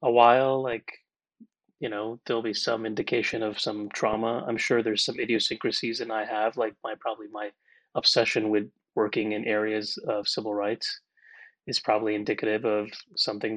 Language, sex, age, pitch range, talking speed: English, male, 30-49, 105-130 Hz, 165 wpm